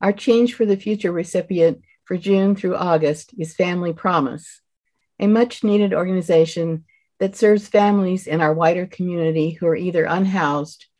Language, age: English, 50-69